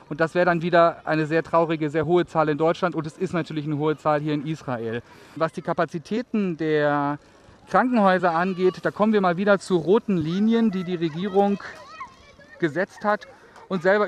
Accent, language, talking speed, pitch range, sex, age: German, German, 190 wpm, 150-180 Hz, male, 40-59